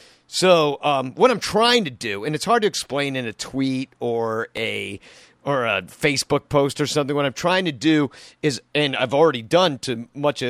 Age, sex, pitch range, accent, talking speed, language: 40-59, male, 120-155 Hz, American, 205 wpm, English